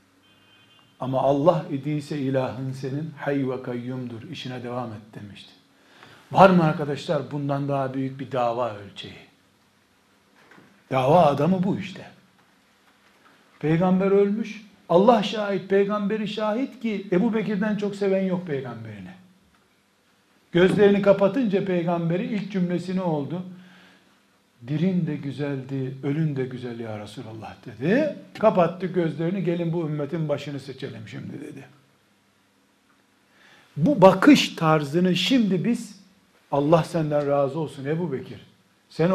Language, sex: Turkish, male